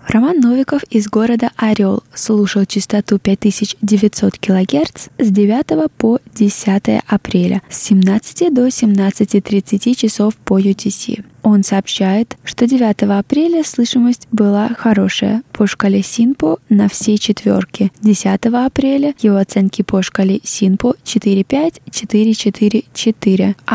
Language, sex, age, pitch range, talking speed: Russian, female, 20-39, 200-240 Hz, 110 wpm